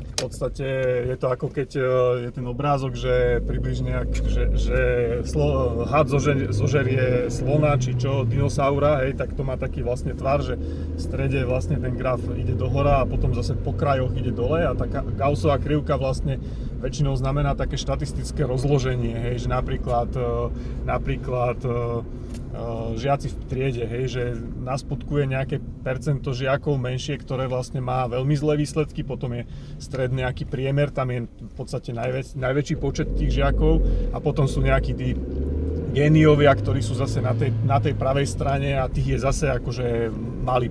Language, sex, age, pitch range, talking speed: Slovak, male, 30-49, 120-145 Hz, 160 wpm